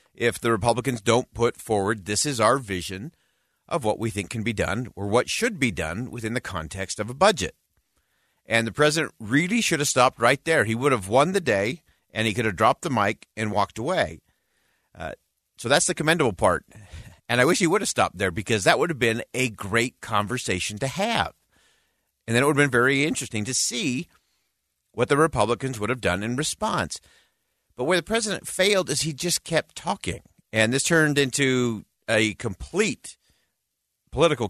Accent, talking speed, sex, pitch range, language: American, 195 wpm, male, 105-140 Hz, English